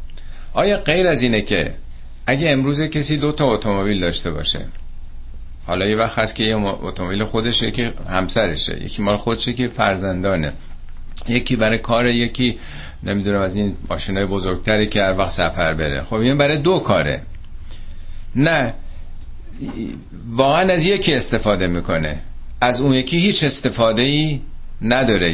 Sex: male